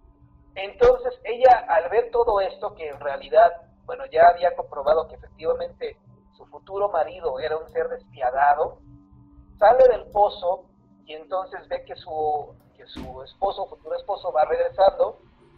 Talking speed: 145 wpm